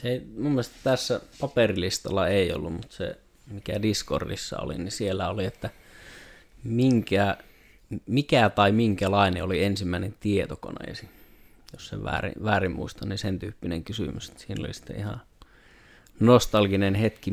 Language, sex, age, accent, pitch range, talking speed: Finnish, male, 30-49, native, 95-110 Hz, 125 wpm